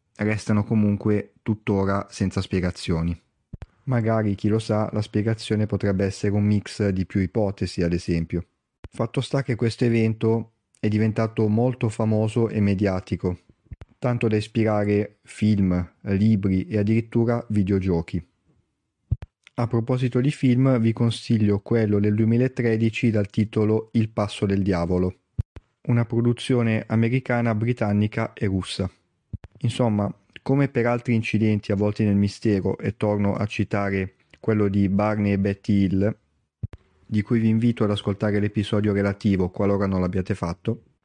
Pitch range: 100-115 Hz